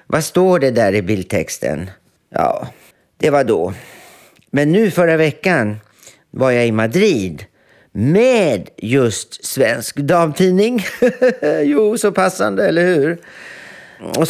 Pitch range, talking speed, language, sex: 110-160 Hz, 120 wpm, Swedish, male